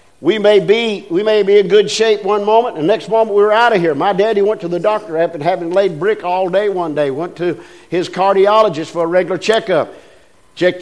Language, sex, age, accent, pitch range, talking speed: English, male, 50-69, American, 155-220 Hz, 240 wpm